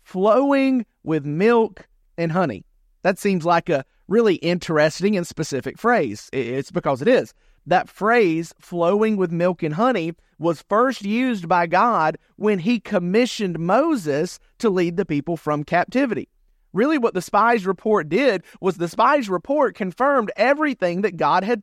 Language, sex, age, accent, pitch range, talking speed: English, male, 40-59, American, 165-230 Hz, 155 wpm